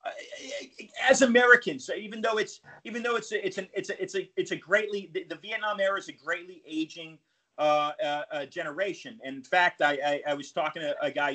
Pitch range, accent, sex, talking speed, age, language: 160-250 Hz, American, male, 220 wpm, 30-49, English